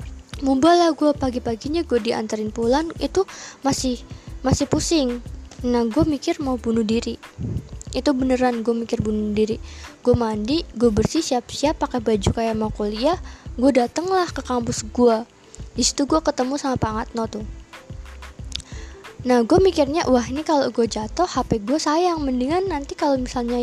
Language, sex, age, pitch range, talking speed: Indonesian, female, 20-39, 245-330 Hz, 150 wpm